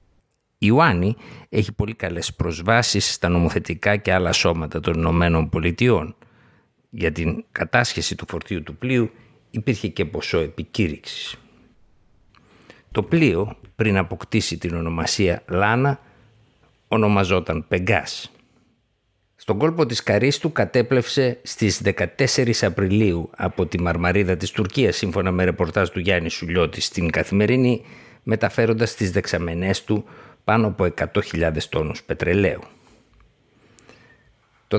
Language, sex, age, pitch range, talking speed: Greek, male, 60-79, 90-120 Hz, 115 wpm